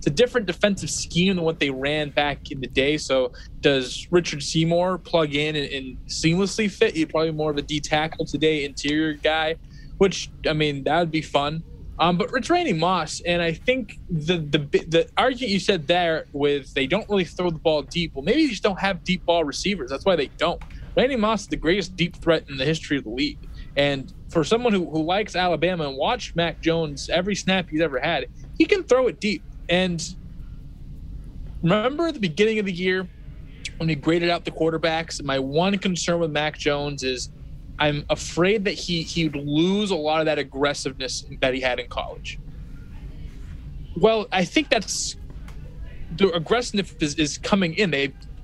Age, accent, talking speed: 20-39, American, 195 wpm